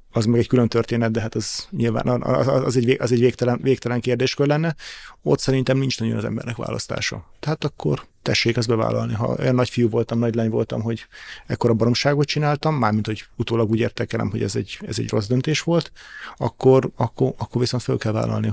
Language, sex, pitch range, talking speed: Hungarian, male, 110-125 Hz, 200 wpm